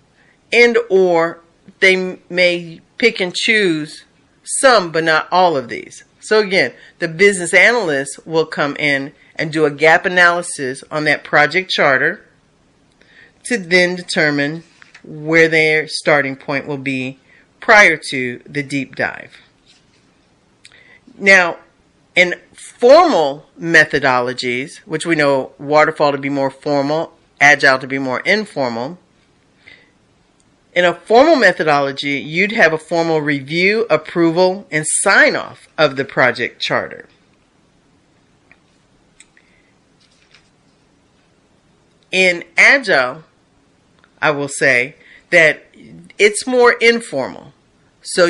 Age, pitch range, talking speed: 40-59, 145-190 Hz, 110 wpm